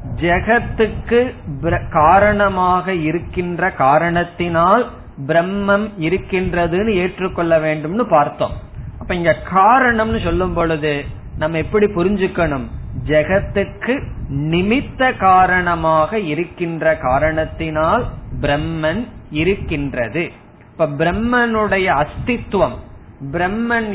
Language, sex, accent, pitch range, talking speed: Tamil, male, native, 155-205 Hz, 65 wpm